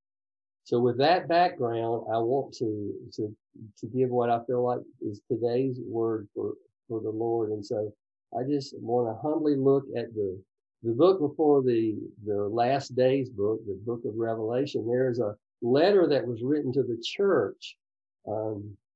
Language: English